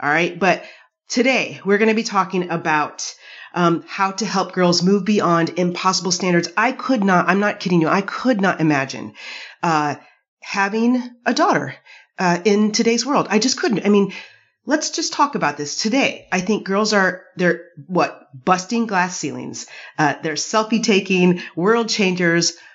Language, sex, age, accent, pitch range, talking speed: English, female, 30-49, American, 170-215 Hz, 170 wpm